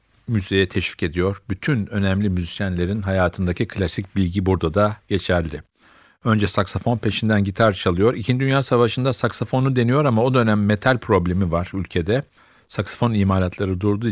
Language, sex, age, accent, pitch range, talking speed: Turkish, male, 40-59, native, 95-110 Hz, 135 wpm